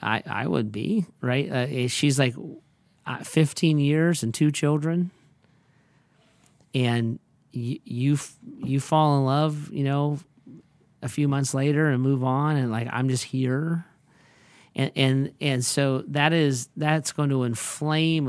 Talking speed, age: 150 wpm, 40-59